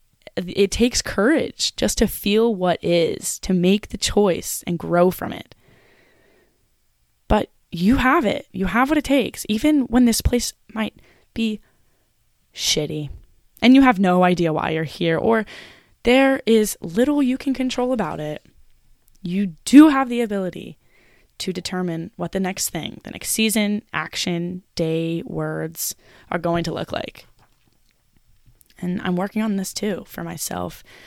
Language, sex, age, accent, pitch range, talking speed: English, female, 20-39, American, 160-215 Hz, 155 wpm